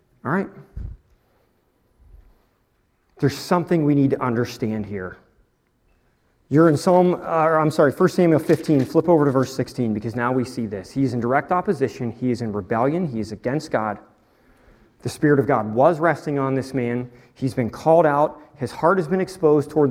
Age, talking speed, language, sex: 40-59, 180 wpm, English, male